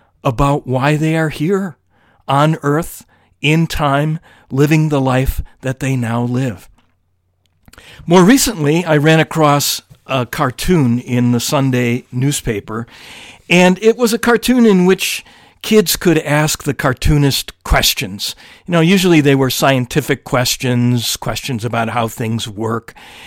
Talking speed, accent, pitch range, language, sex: 135 wpm, American, 115-160 Hz, English, male